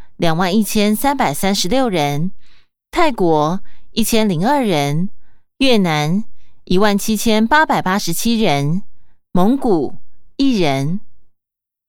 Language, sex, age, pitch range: Chinese, female, 20-39, 165-230 Hz